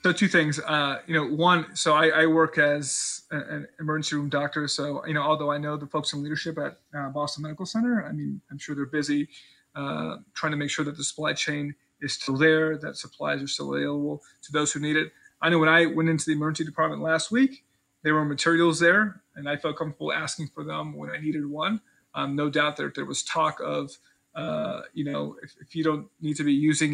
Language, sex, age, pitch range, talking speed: English, male, 30-49, 150-165 Hz, 230 wpm